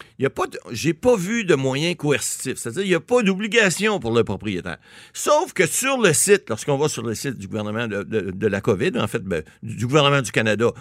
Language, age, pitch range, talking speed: French, 60-79, 120-195 Hz, 220 wpm